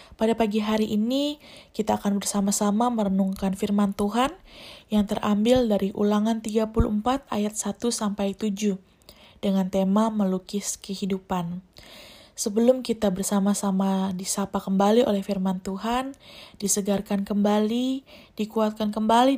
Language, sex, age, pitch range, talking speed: Indonesian, female, 20-39, 195-225 Hz, 100 wpm